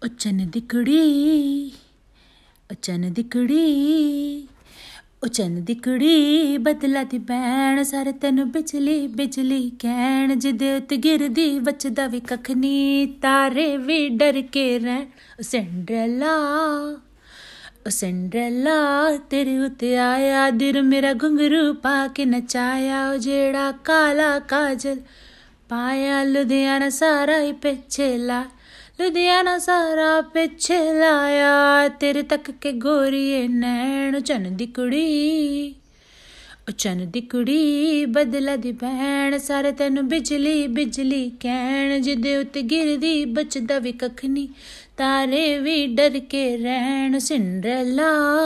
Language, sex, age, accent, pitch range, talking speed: Hindi, female, 30-49, native, 255-290 Hz, 100 wpm